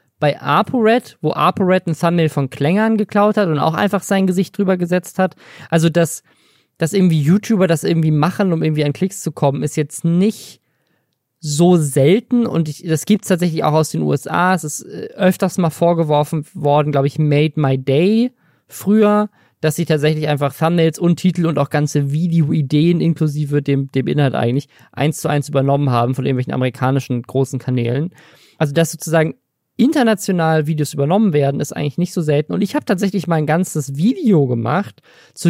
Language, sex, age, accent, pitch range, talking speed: German, male, 20-39, German, 145-185 Hz, 185 wpm